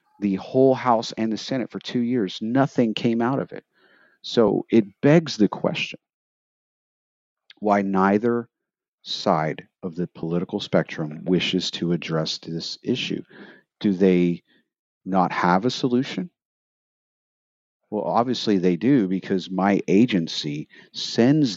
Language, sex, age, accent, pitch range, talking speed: English, male, 50-69, American, 90-115 Hz, 125 wpm